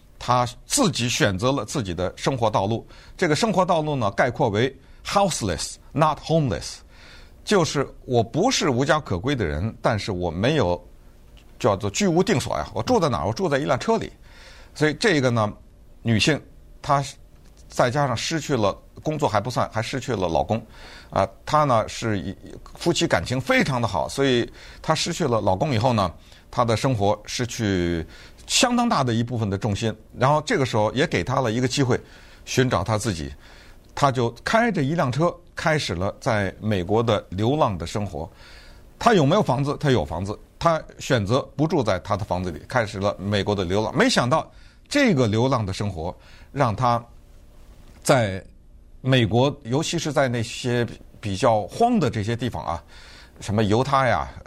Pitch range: 100-140 Hz